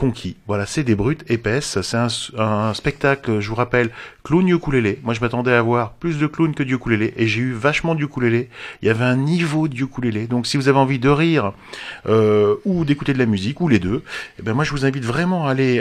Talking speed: 235 wpm